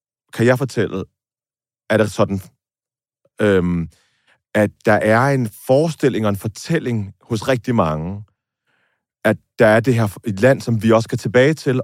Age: 30-49